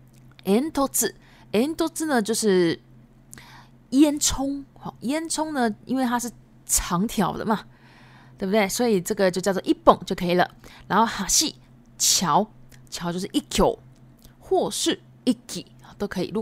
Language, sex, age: Japanese, female, 20-39